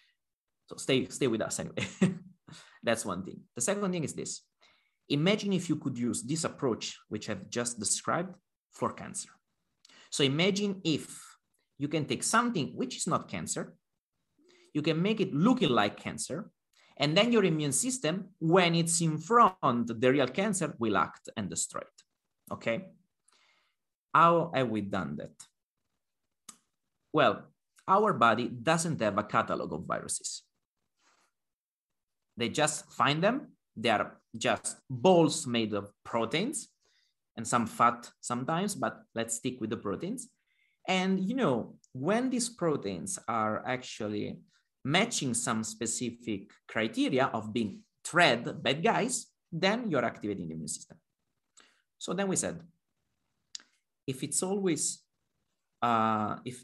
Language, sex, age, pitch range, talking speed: English, male, 30-49, 120-185 Hz, 140 wpm